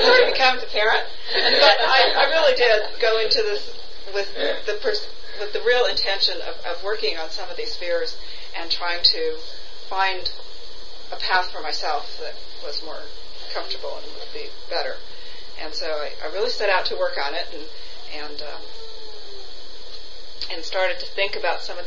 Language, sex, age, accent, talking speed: English, female, 40-59, American, 175 wpm